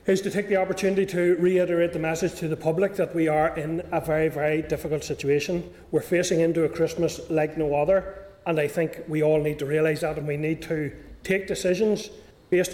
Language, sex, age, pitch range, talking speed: English, male, 30-49, 155-180 Hz, 215 wpm